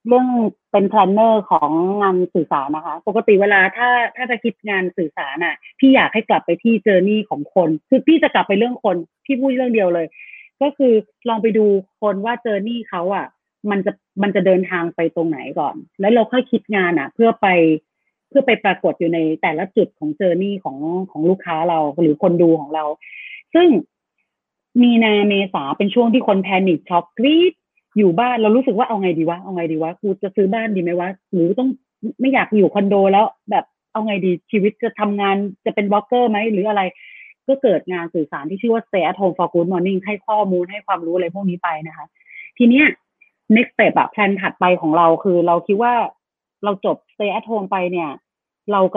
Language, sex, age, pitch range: Thai, female, 30-49, 180-230 Hz